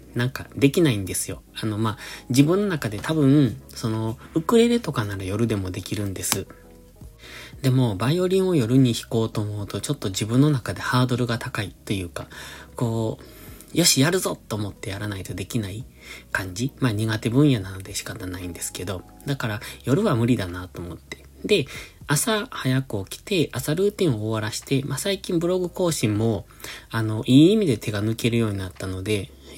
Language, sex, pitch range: Japanese, male, 100-140 Hz